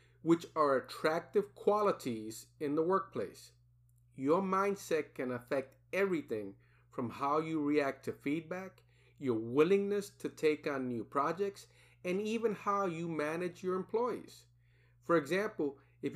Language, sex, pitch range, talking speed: English, male, 120-180 Hz, 130 wpm